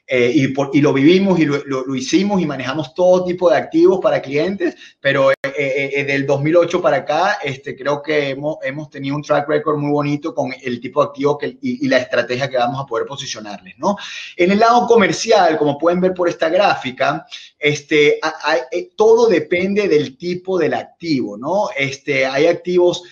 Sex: male